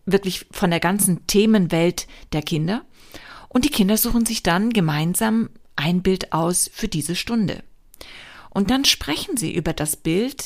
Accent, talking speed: German, 155 wpm